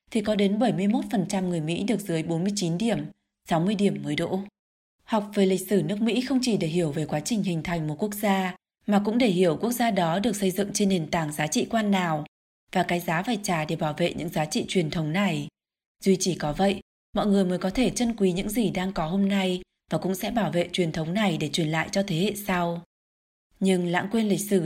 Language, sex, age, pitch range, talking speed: Vietnamese, female, 20-39, 170-215 Hz, 245 wpm